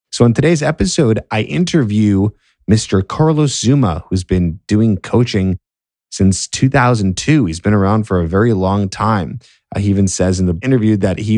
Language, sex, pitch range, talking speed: English, male, 85-110 Hz, 165 wpm